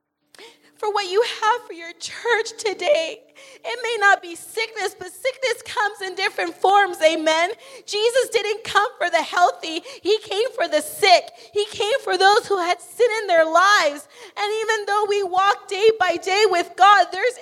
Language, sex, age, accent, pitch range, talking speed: English, female, 30-49, American, 315-410 Hz, 180 wpm